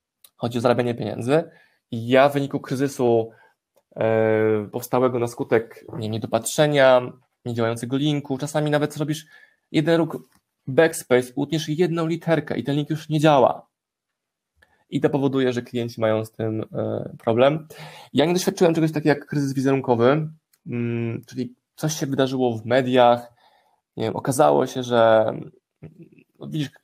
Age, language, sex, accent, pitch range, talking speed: 20-39, Polish, male, native, 120-145 Hz, 140 wpm